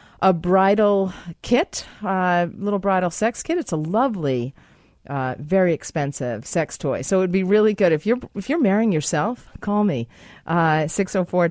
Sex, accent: female, American